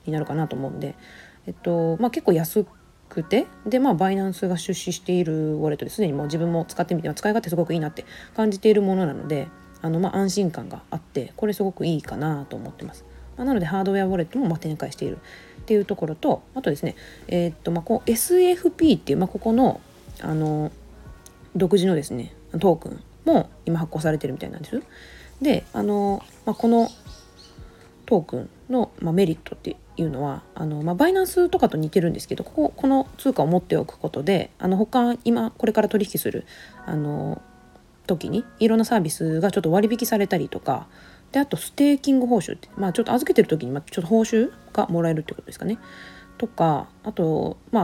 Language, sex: Japanese, female